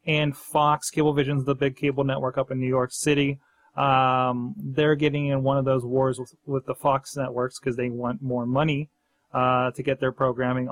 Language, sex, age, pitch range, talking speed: English, male, 30-49, 125-155 Hz, 195 wpm